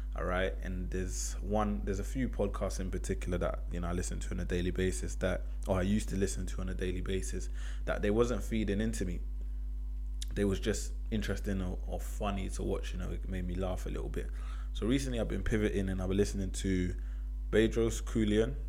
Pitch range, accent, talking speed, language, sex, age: 80-100 Hz, British, 220 wpm, English, male, 20-39